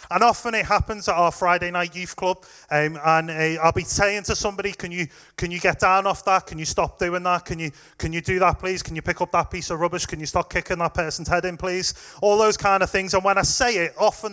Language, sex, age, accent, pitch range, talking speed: English, male, 30-49, British, 155-200 Hz, 275 wpm